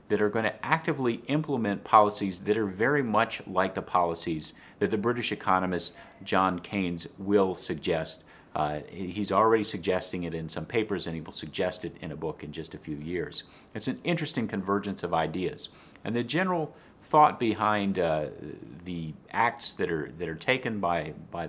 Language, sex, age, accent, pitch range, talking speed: English, male, 50-69, American, 85-110 Hz, 180 wpm